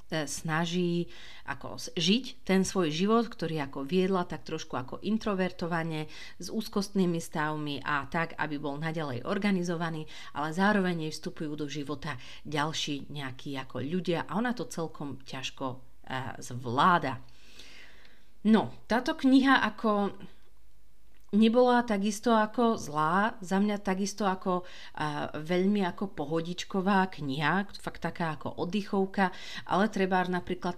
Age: 40-59